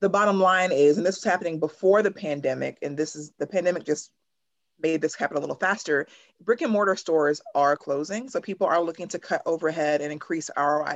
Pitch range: 155-200 Hz